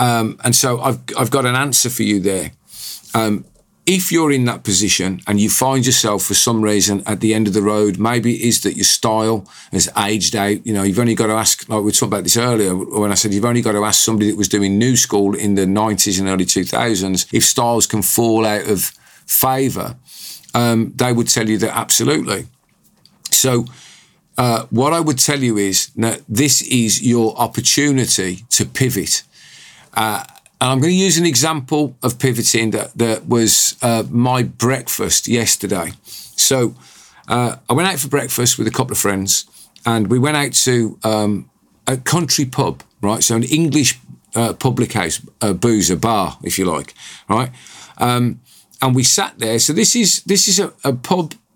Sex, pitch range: male, 105-130 Hz